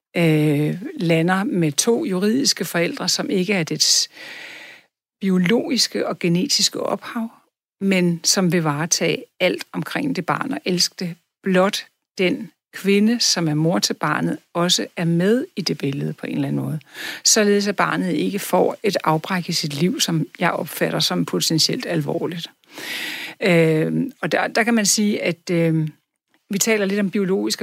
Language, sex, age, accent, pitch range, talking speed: Danish, female, 60-79, native, 160-200 Hz, 160 wpm